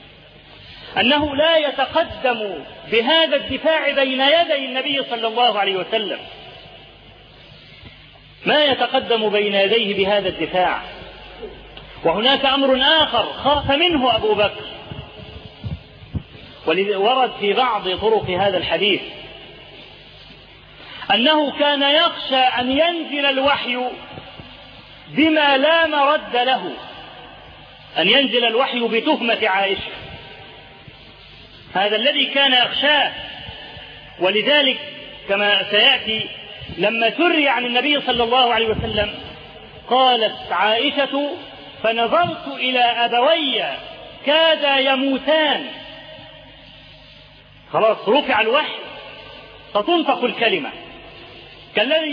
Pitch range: 230-300 Hz